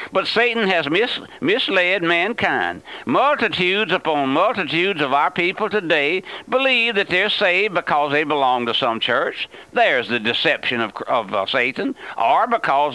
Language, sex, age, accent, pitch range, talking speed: English, male, 60-79, American, 150-215 Hz, 145 wpm